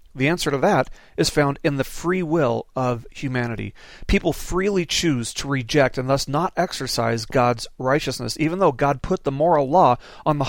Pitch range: 125-155 Hz